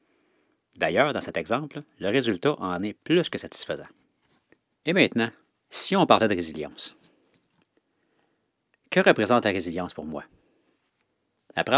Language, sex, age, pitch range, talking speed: French, male, 40-59, 95-125 Hz, 125 wpm